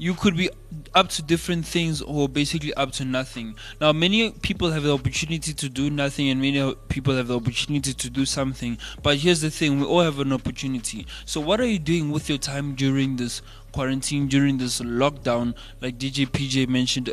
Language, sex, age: English, male, 20-39